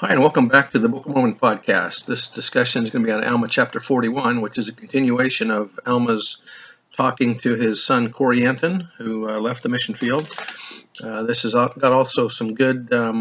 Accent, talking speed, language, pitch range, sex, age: American, 205 wpm, English, 115-130 Hz, male, 50-69